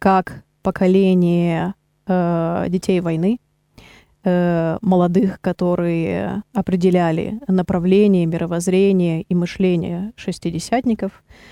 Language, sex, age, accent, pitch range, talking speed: Russian, female, 20-39, native, 175-195 Hz, 75 wpm